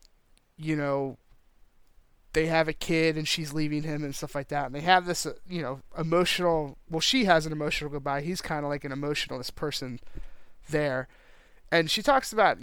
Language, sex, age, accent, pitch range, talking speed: English, male, 30-49, American, 145-175 Hz, 185 wpm